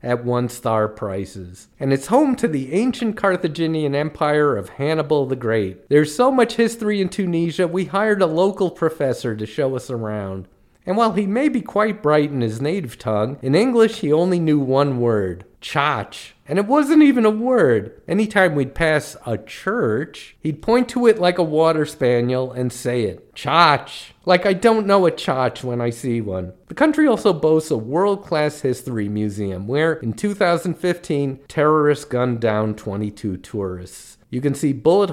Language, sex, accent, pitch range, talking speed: English, male, American, 110-170 Hz, 175 wpm